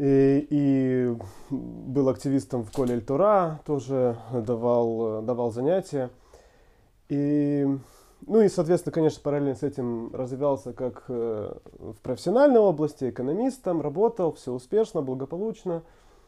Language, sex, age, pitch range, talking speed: Russian, male, 20-39, 125-160 Hz, 105 wpm